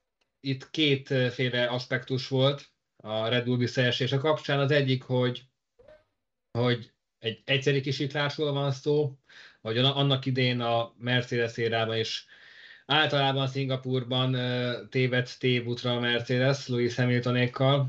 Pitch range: 120-135 Hz